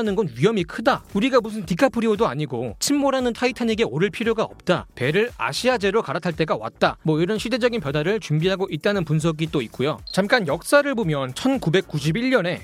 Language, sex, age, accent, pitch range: Korean, male, 30-49, native, 160-235 Hz